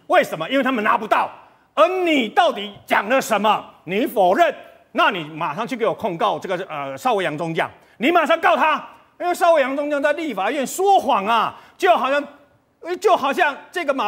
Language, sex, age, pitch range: Chinese, male, 40-59, 230-320 Hz